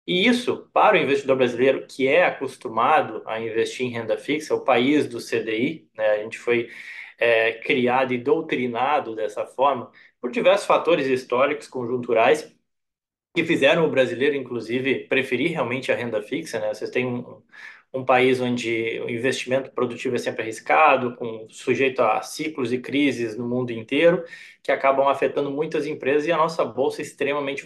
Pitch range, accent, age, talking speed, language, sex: 120-145 Hz, Brazilian, 20-39, 165 wpm, Portuguese, male